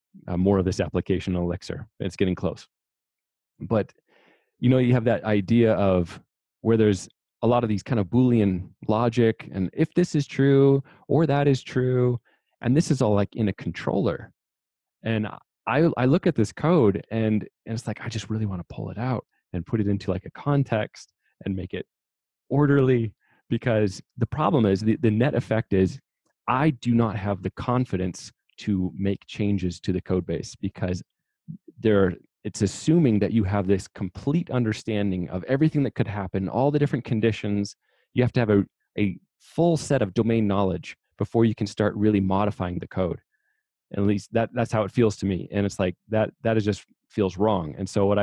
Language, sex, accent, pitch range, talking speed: English, male, American, 95-120 Hz, 195 wpm